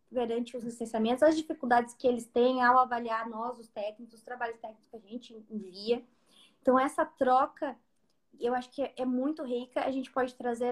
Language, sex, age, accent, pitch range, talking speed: Portuguese, female, 20-39, Brazilian, 235-280 Hz, 185 wpm